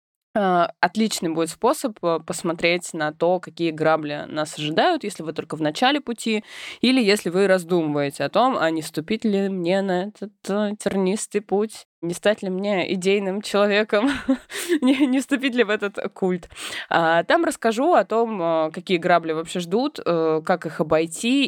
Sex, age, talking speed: female, 20-39, 150 wpm